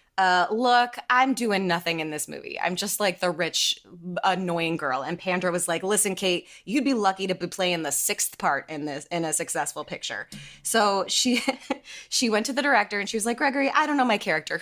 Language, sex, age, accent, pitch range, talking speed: English, female, 20-39, American, 175-240 Hz, 220 wpm